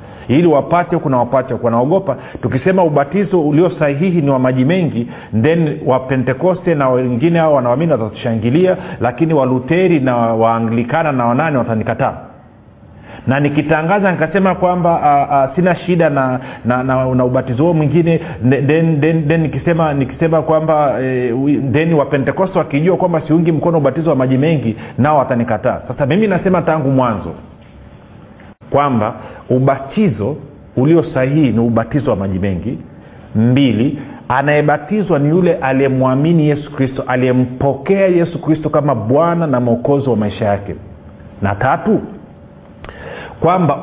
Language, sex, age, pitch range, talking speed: Swahili, male, 40-59, 125-160 Hz, 130 wpm